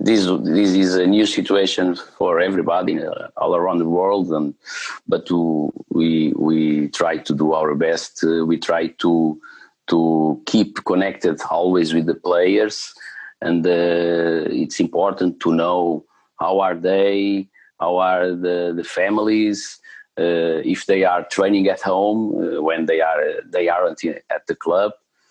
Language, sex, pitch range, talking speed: English, male, 80-110 Hz, 150 wpm